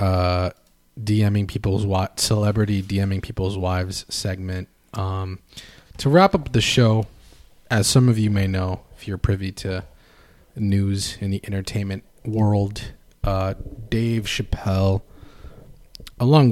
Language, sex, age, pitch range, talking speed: English, male, 20-39, 95-115 Hz, 120 wpm